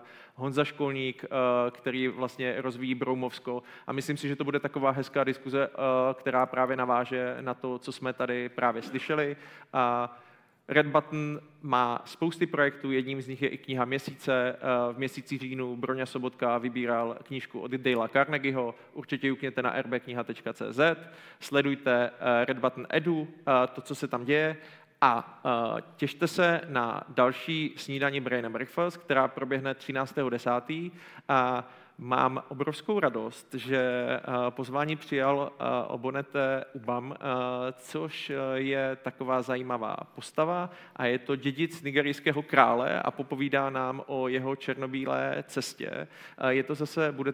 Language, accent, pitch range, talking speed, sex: Czech, native, 125-140 Hz, 130 wpm, male